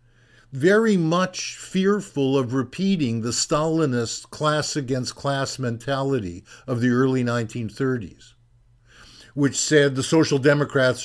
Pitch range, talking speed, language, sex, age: 120-165 Hz, 100 wpm, English, male, 50-69